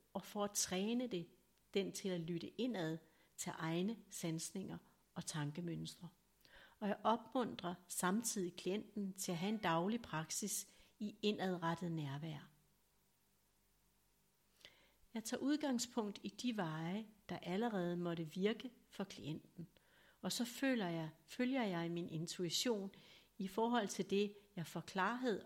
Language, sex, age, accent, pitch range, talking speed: Danish, female, 60-79, native, 170-215 Hz, 130 wpm